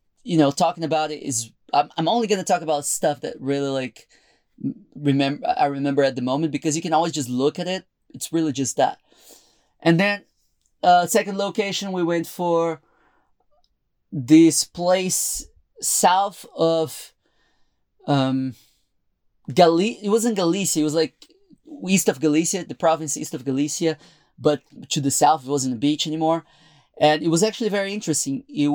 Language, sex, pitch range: English, male, 140-175 Hz